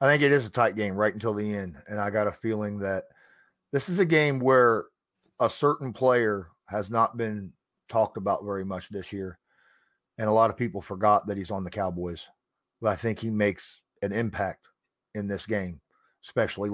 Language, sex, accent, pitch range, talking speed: English, male, American, 95-110 Hz, 200 wpm